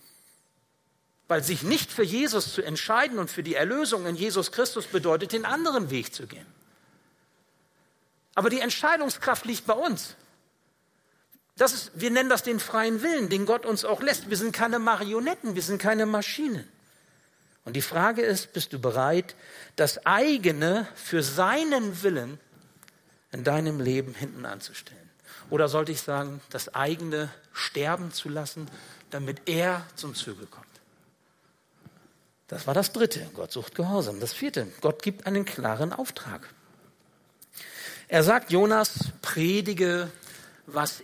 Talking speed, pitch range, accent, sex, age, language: 140 wpm, 145-215 Hz, German, male, 60-79, German